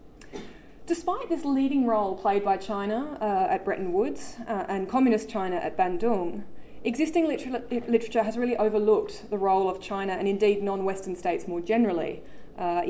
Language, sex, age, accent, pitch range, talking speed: English, female, 20-39, Australian, 185-235 Hz, 155 wpm